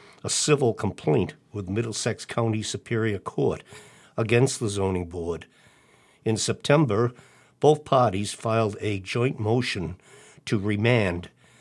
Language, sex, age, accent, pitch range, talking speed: English, male, 60-79, American, 100-120 Hz, 115 wpm